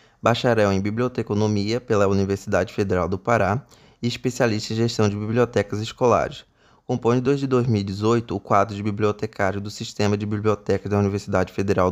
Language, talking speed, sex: Portuguese, 145 wpm, male